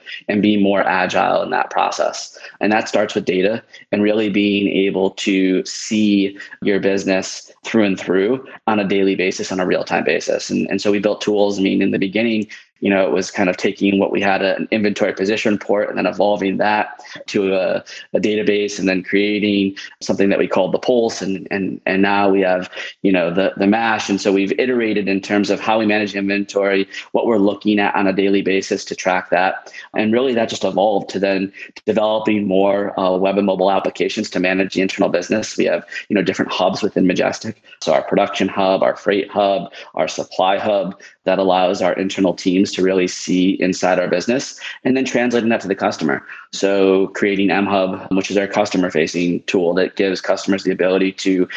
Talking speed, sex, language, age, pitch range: 205 wpm, male, English, 20-39, 95-105 Hz